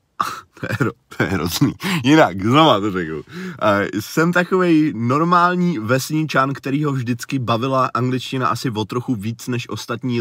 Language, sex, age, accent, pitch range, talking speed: Czech, male, 30-49, native, 85-115 Hz, 130 wpm